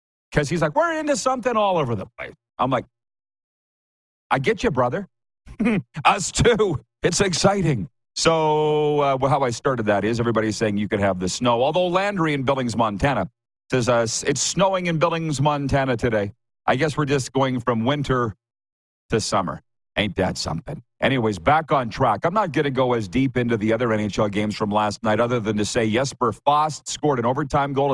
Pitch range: 115-145 Hz